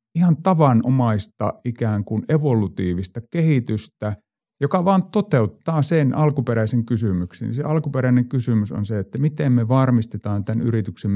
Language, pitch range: Finnish, 100-125 Hz